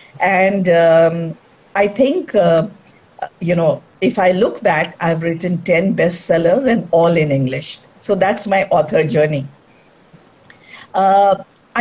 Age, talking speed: 50-69, 125 wpm